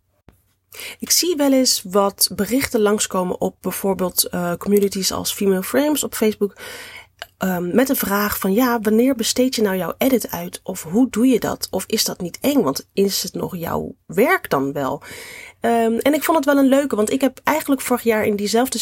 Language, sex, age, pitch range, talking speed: Dutch, female, 30-49, 190-260 Hz, 195 wpm